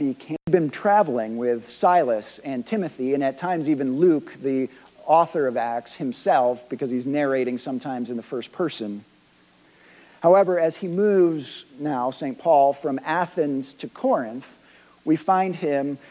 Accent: American